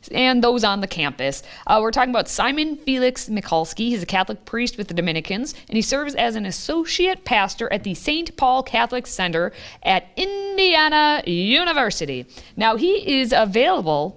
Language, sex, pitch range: English, female, 180-260 Hz